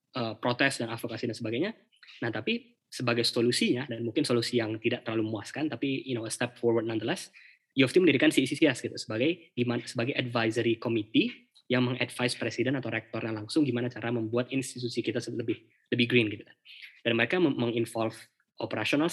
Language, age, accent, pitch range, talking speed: Indonesian, 10-29, native, 115-130 Hz, 165 wpm